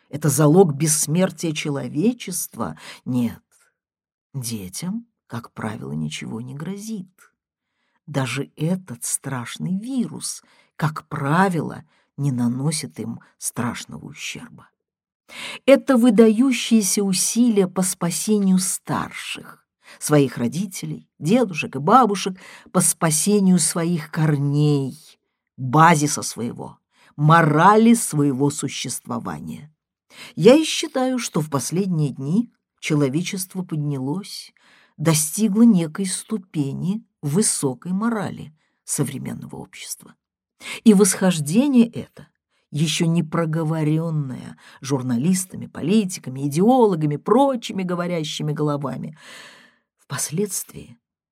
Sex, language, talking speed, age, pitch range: female, Russian, 85 wpm, 50-69, 145-205 Hz